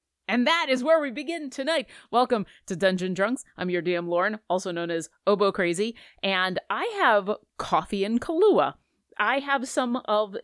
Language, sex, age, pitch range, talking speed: English, female, 30-49, 170-235 Hz, 170 wpm